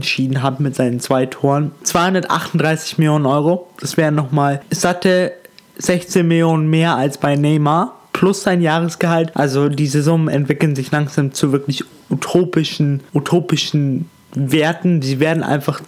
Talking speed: 140 wpm